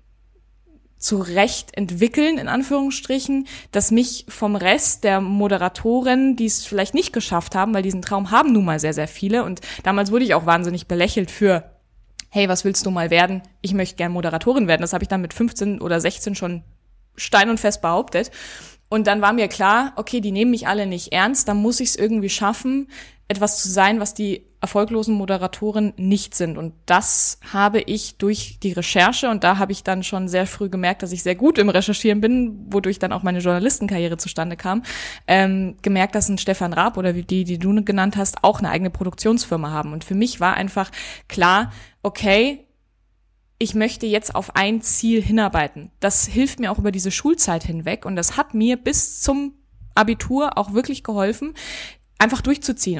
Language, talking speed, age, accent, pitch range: German, 190 wpm, 20-39, German, 185-240 Hz